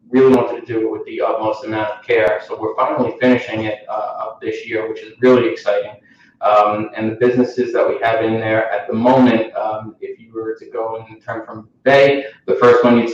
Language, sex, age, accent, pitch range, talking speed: English, male, 20-39, American, 110-120 Hz, 225 wpm